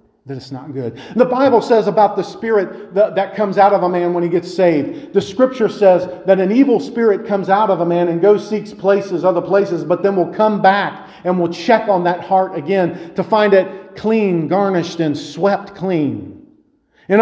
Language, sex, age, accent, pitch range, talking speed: English, male, 40-59, American, 180-225 Hz, 205 wpm